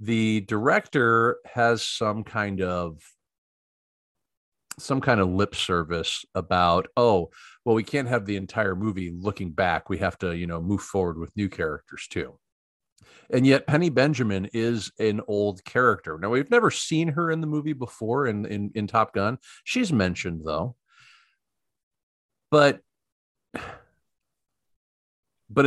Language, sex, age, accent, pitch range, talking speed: English, male, 40-59, American, 90-120 Hz, 140 wpm